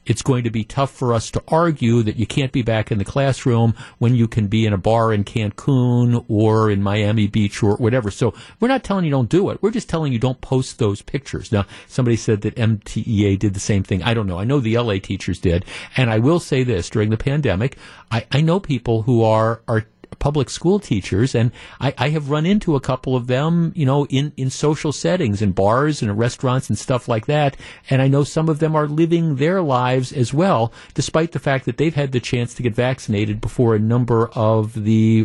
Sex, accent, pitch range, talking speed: male, American, 110-140 Hz, 230 wpm